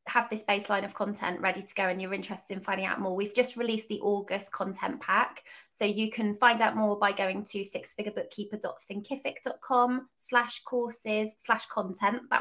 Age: 20-39